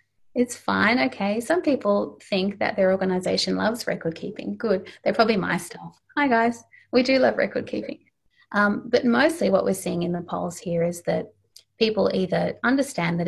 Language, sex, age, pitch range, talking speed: English, female, 30-49, 170-230 Hz, 180 wpm